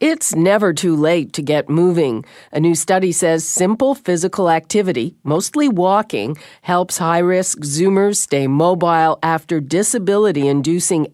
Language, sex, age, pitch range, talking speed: English, female, 50-69, 150-200 Hz, 125 wpm